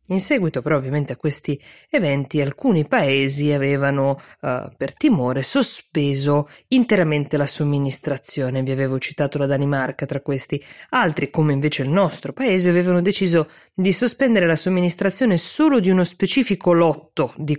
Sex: female